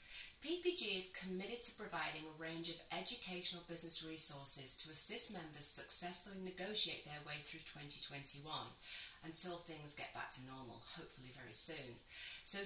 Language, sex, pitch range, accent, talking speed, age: English, female, 150-185 Hz, British, 140 wpm, 30-49